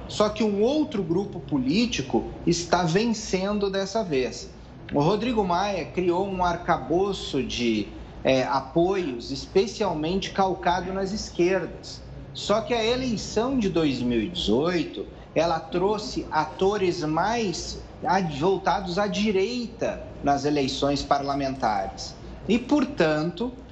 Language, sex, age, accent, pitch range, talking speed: Portuguese, male, 40-59, Brazilian, 150-195 Hz, 100 wpm